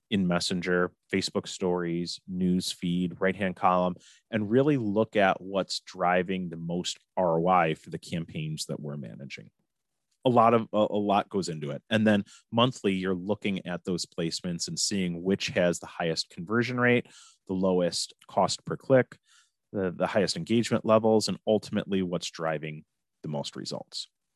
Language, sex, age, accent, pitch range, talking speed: English, male, 30-49, American, 90-115 Hz, 160 wpm